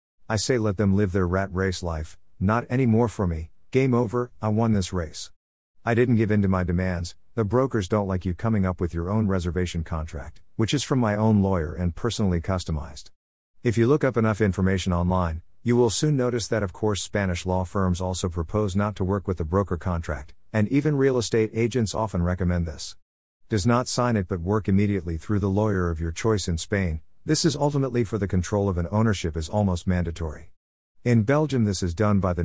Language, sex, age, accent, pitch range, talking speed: English, male, 50-69, American, 85-115 Hz, 215 wpm